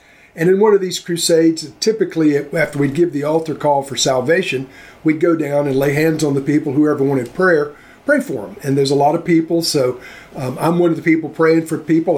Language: English